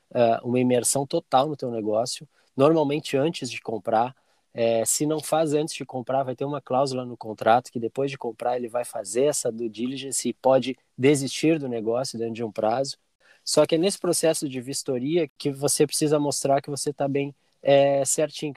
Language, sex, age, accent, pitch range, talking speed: Portuguese, male, 20-39, Brazilian, 120-150 Hz, 190 wpm